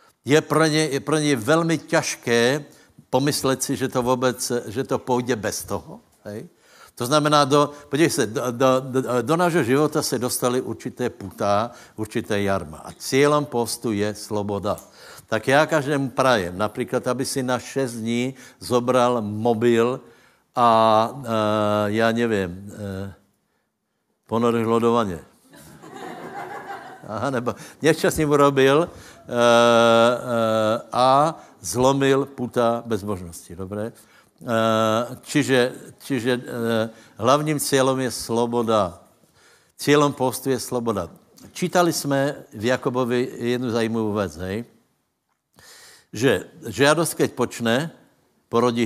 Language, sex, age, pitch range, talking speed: Slovak, male, 70-89, 110-135 Hz, 120 wpm